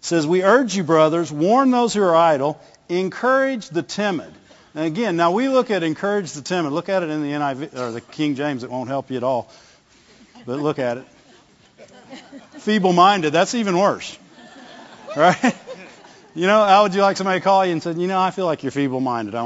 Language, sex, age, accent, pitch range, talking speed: English, male, 50-69, American, 145-220 Hz, 210 wpm